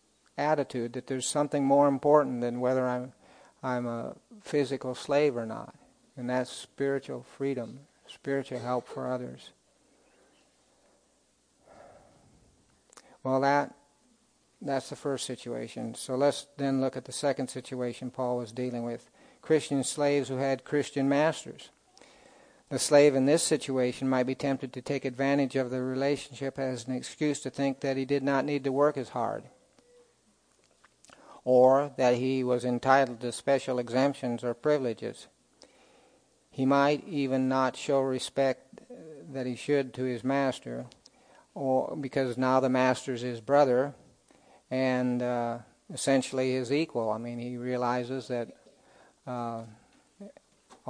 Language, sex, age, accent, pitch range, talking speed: English, male, 60-79, American, 125-140 Hz, 135 wpm